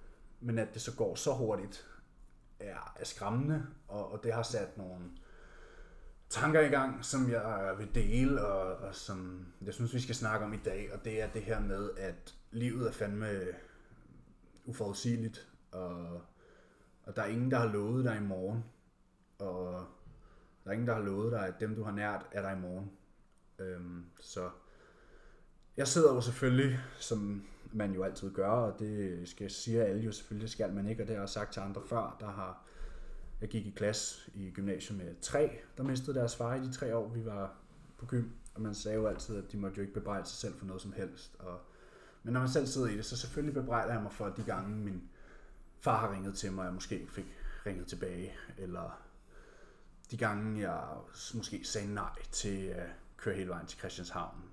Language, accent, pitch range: Danish, native, 95-115 Hz